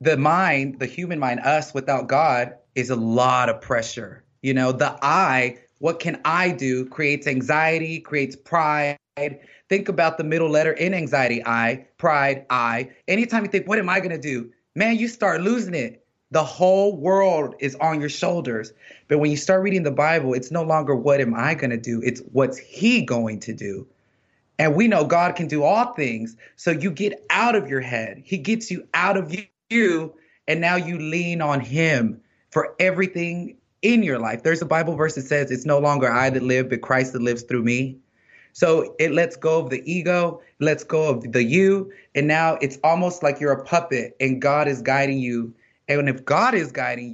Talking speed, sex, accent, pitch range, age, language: 200 wpm, male, American, 130-170 Hz, 30-49, English